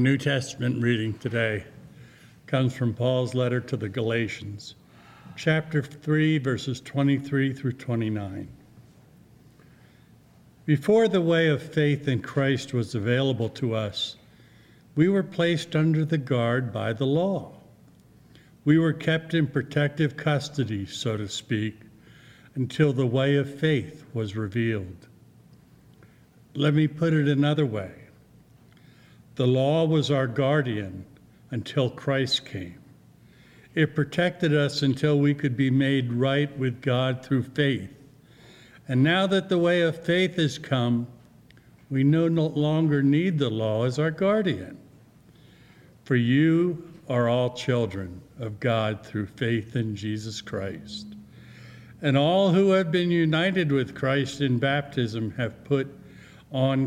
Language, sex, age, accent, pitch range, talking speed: English, male, 60-79, American, 120-150 Hz, 130 wpm